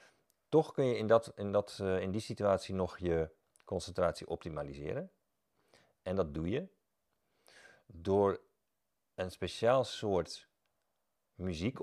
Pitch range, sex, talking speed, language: 90-110 Hz, male, 120 wpm, Dutch